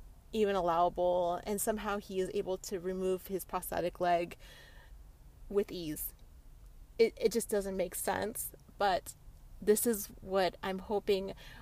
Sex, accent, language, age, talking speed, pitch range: female, American, English, 30-49, 135 wpm, 185-230 Hz